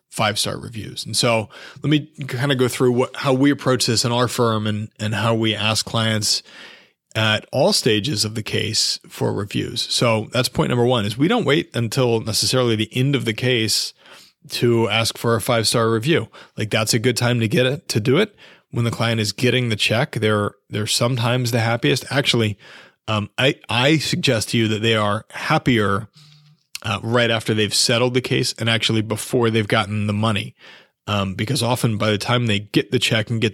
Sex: male